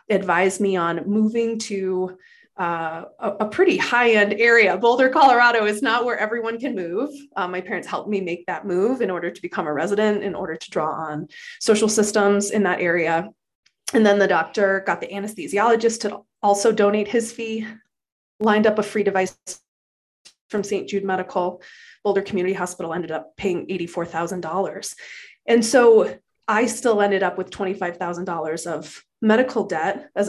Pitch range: 180-230 Hz